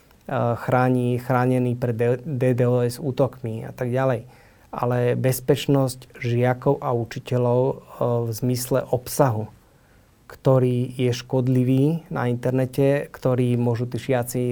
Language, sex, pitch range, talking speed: Slovak, male, 120-130 Hz, 100 wpm